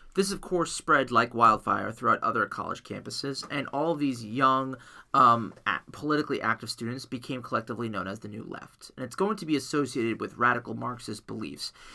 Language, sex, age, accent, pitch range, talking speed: English, male, 30-49, American, 125-160 Hz, 175 wpm